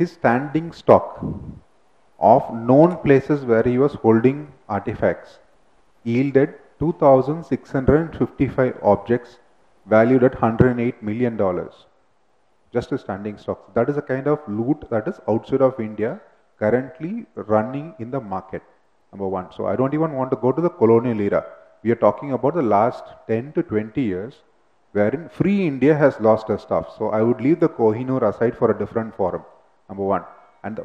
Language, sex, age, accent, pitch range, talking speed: English, male, 30-49, Indian, 110-140 Hz, 165 wpm